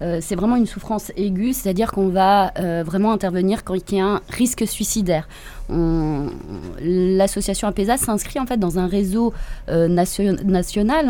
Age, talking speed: 20-39, 160 wpm